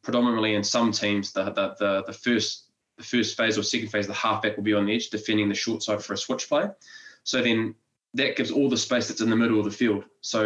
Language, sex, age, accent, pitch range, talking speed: English, male, 20-39, Australian, 105-115 Hz, 260 wpm